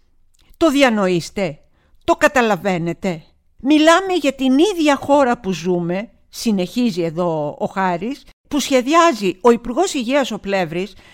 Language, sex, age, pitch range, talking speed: Greek, female, 50-69, 180-275 Hz, 120 wpm